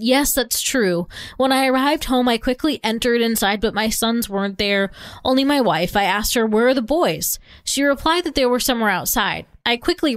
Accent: American